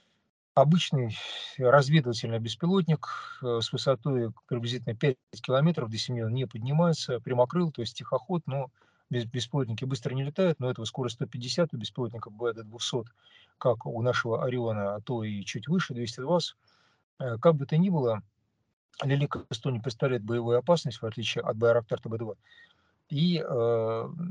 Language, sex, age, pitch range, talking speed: Russian, male, 40-59, 115-145 Hz, 135 wpm